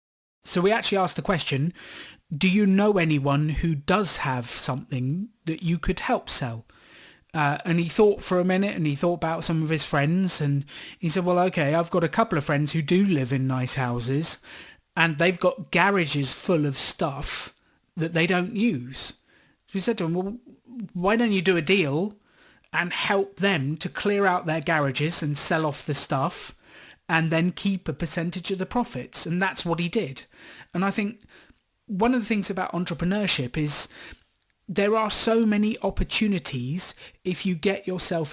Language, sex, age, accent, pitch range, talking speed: English, male, 30-49, British, 150-195 Hz, 185 wpm